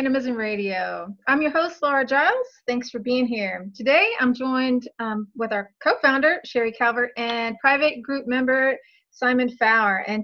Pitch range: 215-260 Hz